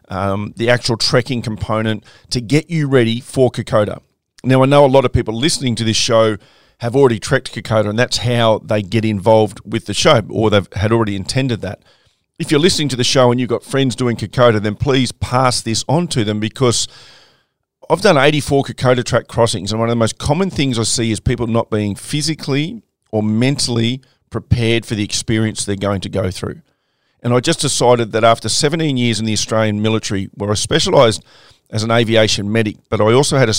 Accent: Australian